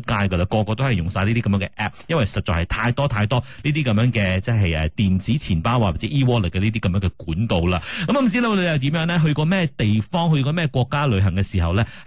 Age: 30-49